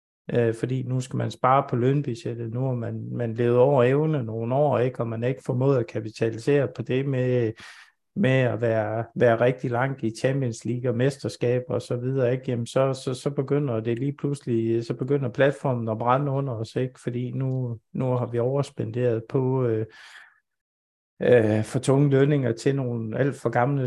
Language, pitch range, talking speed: Danish, 115-135 Hz, 185 wpm